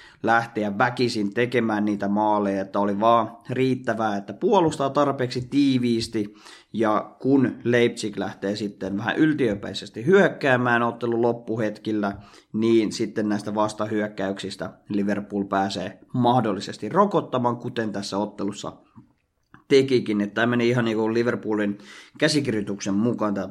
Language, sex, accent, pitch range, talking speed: Finnish, male, native, 105-125 Hz, 115 wpm